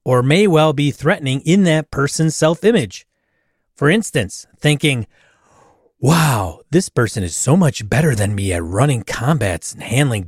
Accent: American